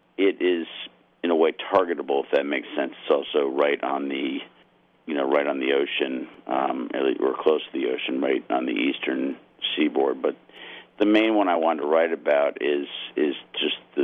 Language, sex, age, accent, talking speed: English, male, 50-69, American, 190 wpm